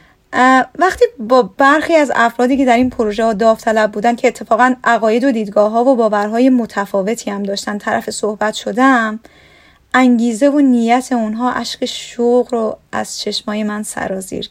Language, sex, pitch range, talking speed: Persian, female, 225-270 Hz, 155 wpm